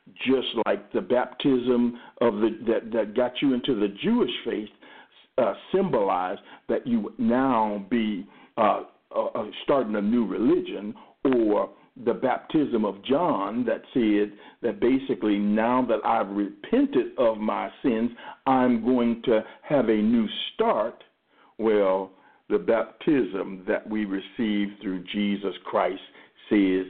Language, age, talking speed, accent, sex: English, 60-79, 135 wpm, American, male